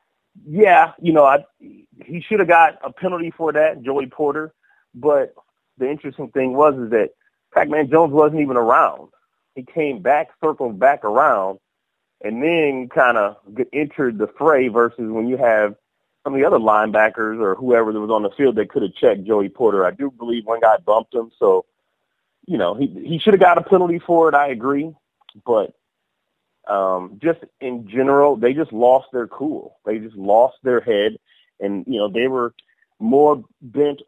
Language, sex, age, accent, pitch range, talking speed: English, male, 30-49, American, 115-155 Hz, 185 wpm